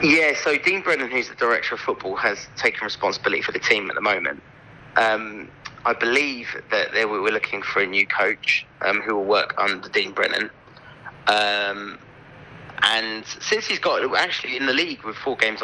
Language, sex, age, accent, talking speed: English, male, 30-49, British, 190 wpm